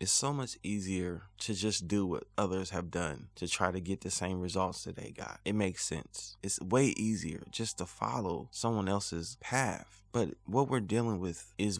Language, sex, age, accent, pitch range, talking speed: English, male, 20-39, American, 90-105 Hz, 200 wpm